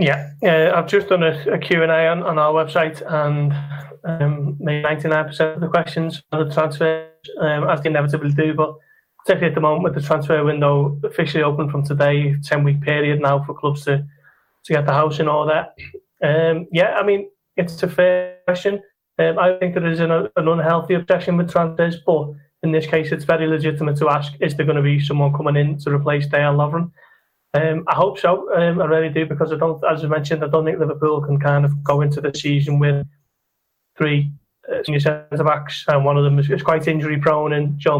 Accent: British